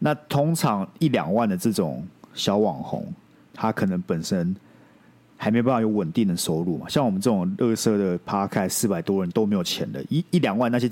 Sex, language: male, Chinese